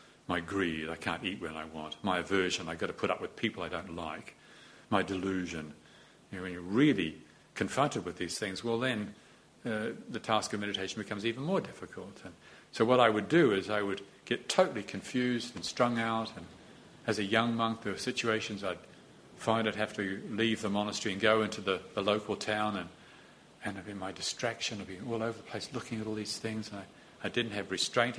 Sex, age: male, 50-69